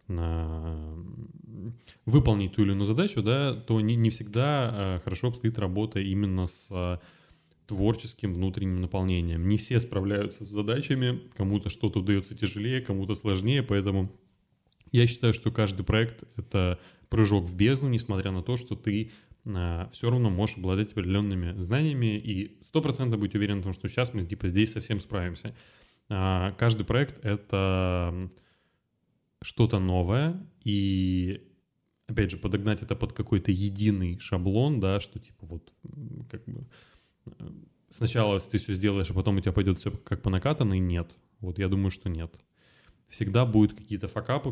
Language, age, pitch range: Russian, 20-39, 95-110 Hz